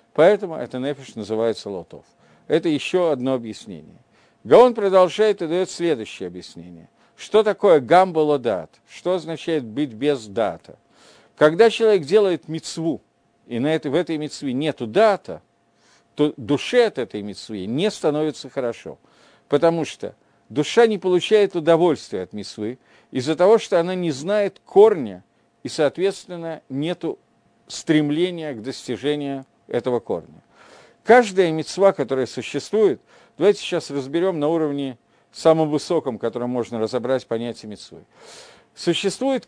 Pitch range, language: 135-185 Hz, Russian